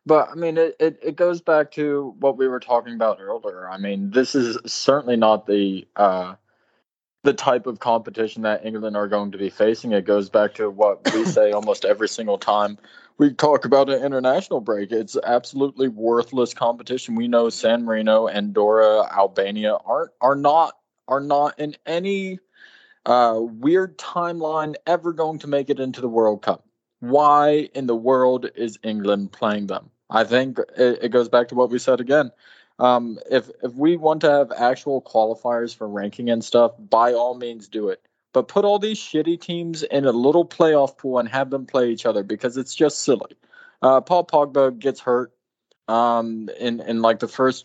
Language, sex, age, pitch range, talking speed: English, male, 20-39, 110-150 Hz, 185 wpm